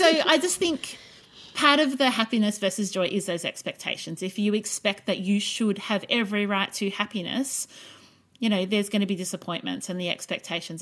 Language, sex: English, female